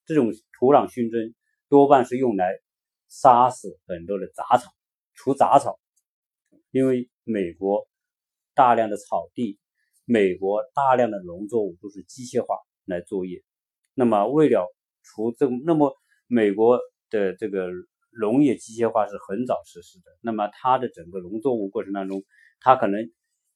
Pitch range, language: 100-155 Hz, Chinese